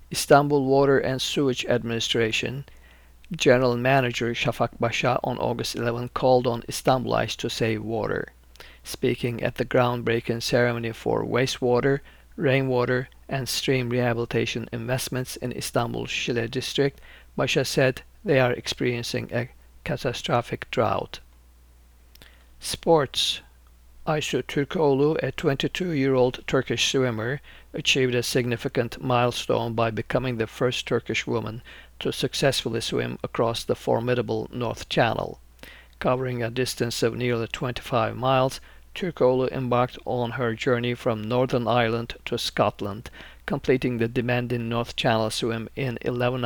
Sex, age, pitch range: male, 50-69, 115-130 Hz